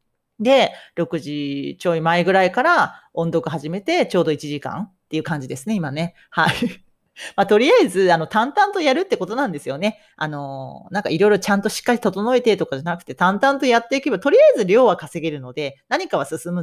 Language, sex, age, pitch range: Japanese, female, 40-59, 160-255 Hz